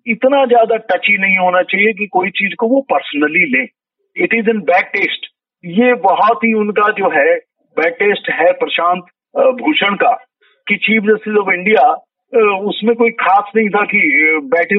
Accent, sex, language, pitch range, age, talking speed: native, male, Hindi, 185-250 Hz, 50-69, 175 wpm